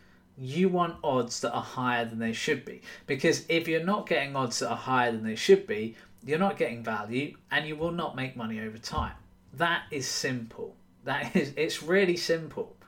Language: English